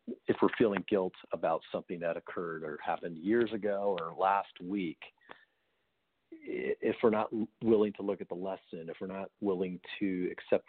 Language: English